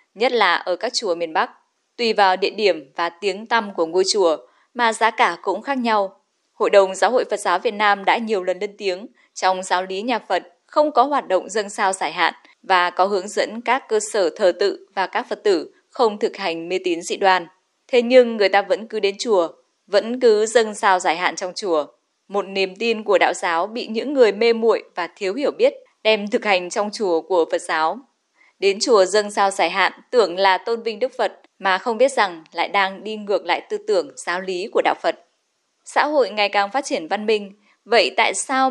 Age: 20-39